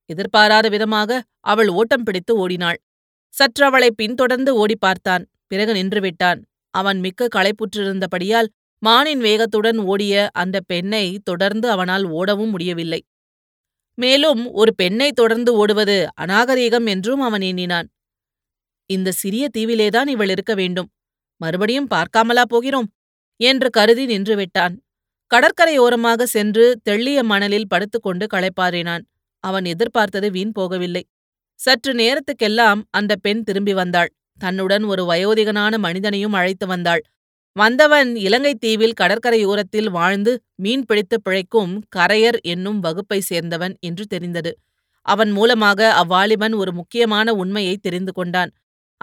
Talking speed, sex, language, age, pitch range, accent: 105 wpm, female, Tamil, 30-49, 190-230 Hz, native